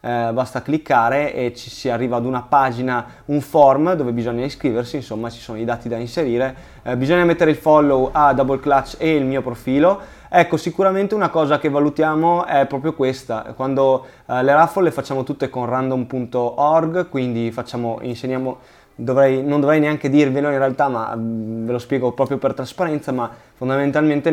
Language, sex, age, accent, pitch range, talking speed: Italian, male, 20-39, native, 125-150 Hz, 180 wpm